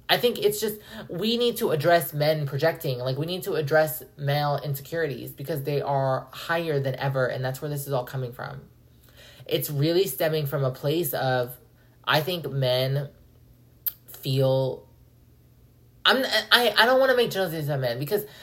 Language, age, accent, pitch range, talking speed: English, 20-39, American, 130-180 Hz, 175 wpm